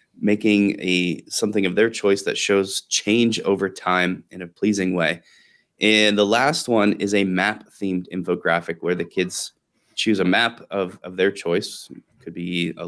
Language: English